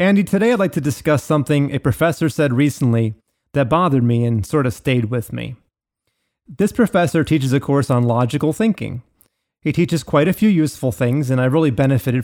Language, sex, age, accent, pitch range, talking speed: English, male, 30-49, American, 125-160 Hz, 190 wpm